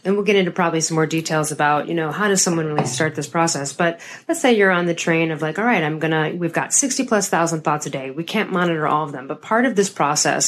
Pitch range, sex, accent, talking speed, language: 160-215 Hz, female, American, 290 wpm, English